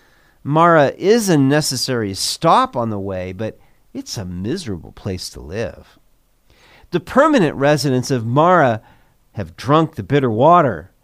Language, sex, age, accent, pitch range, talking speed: English, male, 50-69, American, 110-165 Hz, 135 wpm